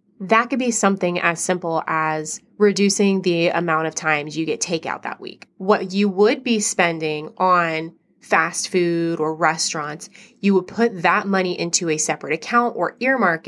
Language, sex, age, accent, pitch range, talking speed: English, female, 20-39, American, 170-205 Hz, 170 wpm